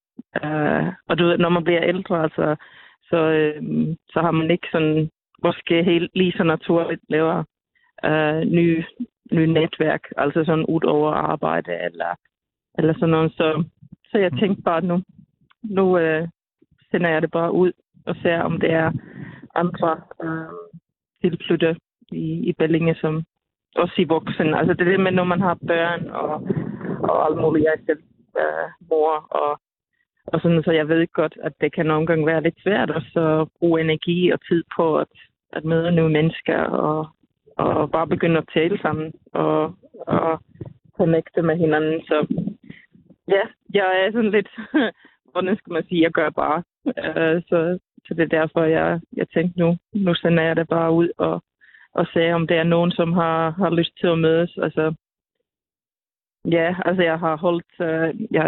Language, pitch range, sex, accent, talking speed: Danish, 160-175 Hz, female, native, 170 wpm